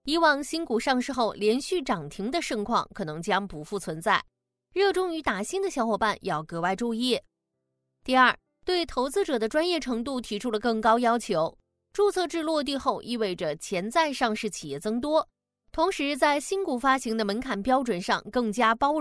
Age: 20-39